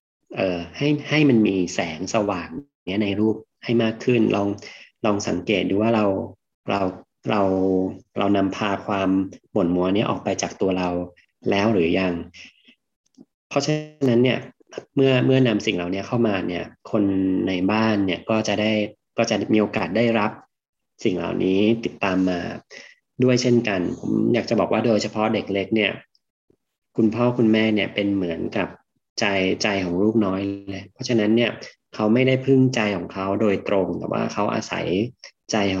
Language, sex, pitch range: Thai, male, 95-115 Hz